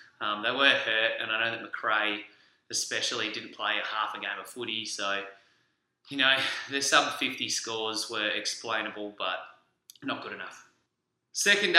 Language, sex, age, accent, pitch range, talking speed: English, male, 20-39, Australian, 110-130 Hz, 160 wpm